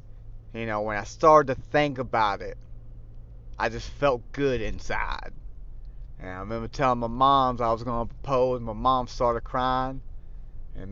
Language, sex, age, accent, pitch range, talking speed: English, male, 30-49, American, 115-145 Hz, 170 wpm